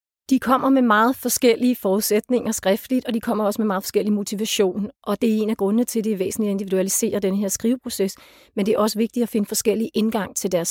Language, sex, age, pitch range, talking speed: Danish, female, 30-49, 195-230 Hz, 235 wpm